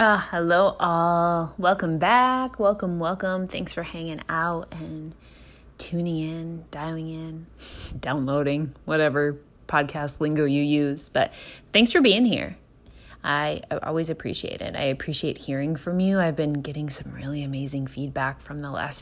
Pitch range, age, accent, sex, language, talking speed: 145-180 Hz, 20-39, American, female, English, 150 wpm